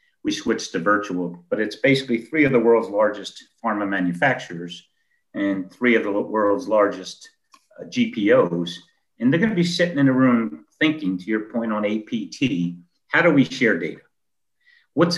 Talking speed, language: 165 wpm, English